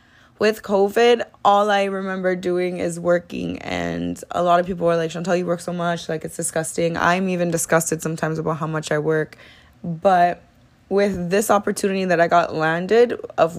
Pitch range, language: 160-185 Hz, English